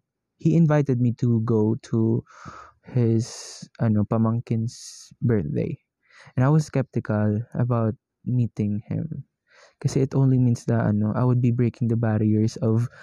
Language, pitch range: Filipino, 115-140 Hz